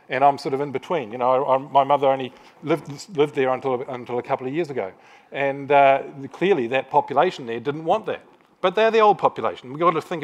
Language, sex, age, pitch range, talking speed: English, male, 40-59, 125-160 Hz, 245 wpm